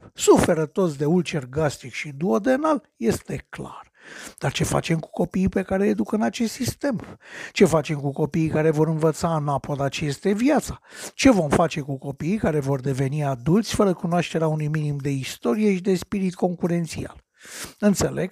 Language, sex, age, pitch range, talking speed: Romanian, male, 60-79, 150-205 Hz, 165 wpm